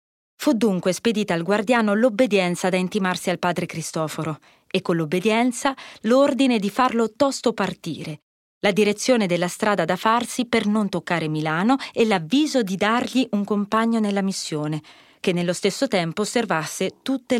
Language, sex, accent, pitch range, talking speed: Italian, female, native, 175-225 Hz, 150 wpm